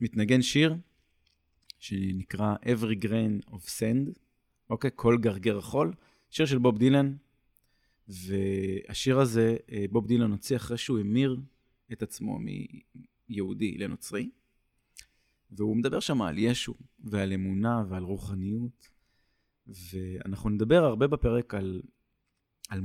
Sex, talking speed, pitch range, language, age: male, 115 wpm, 100-130 Hz, Hebrew, 30-49